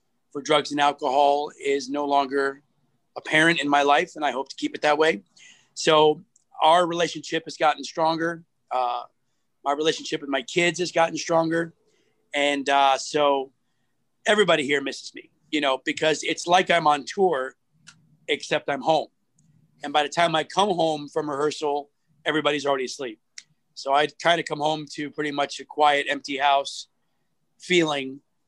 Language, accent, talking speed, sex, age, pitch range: English, American, 165 wpm, male, 30-49, 140-170 Hz